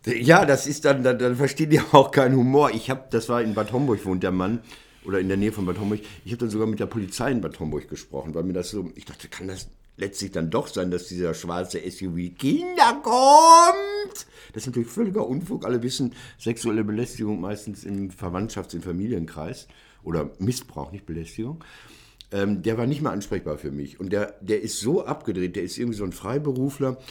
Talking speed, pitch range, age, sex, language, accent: 210 wpm, 100-135 Hz, 60-79, male, German, German